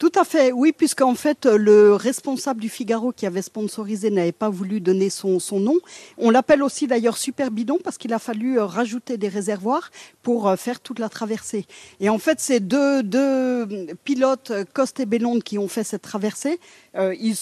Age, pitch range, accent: 40-59, 185-245 Hz, French